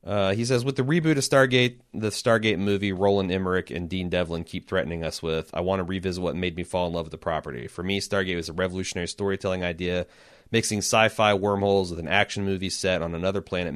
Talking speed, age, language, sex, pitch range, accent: 225 wpm, 30-49, English, male, 95-120 Hz, American